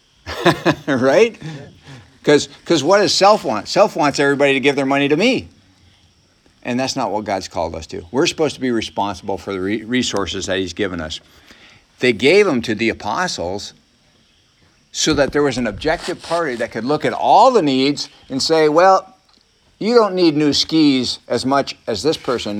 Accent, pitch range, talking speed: American, 100-140 Hz, 185 wpm